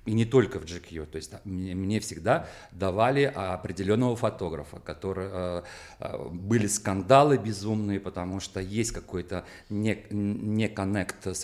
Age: 40-59